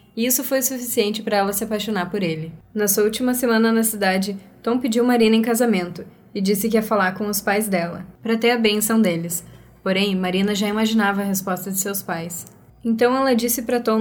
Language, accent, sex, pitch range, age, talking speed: Portuguese, Brazilian, female, 195-235 Hz, 10-29, 210 wpm